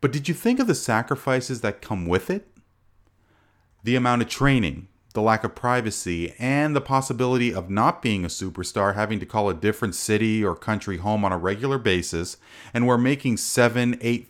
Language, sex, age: English, male, 40-59